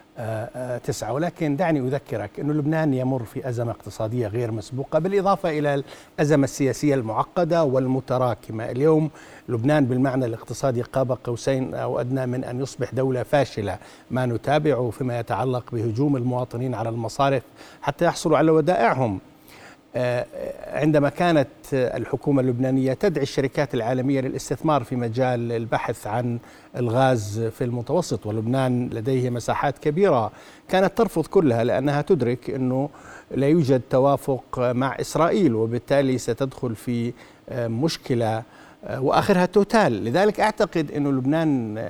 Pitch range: 120-145 Hz